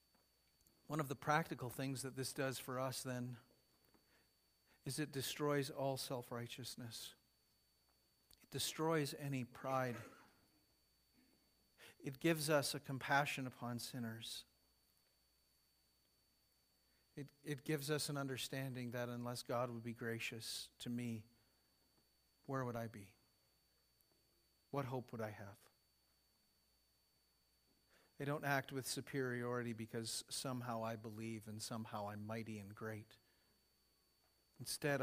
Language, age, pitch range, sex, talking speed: English, 50-69, 110-135 Hz, male, 115 wpm